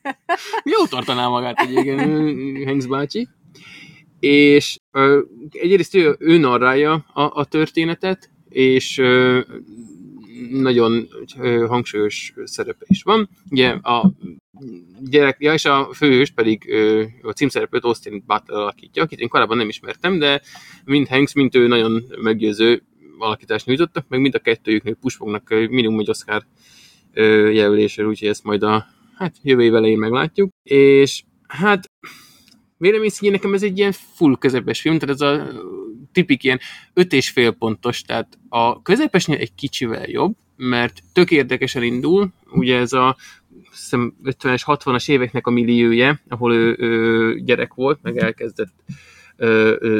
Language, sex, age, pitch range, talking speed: Hungarian, male, 20-39, 120-155 Hz, 125 wpm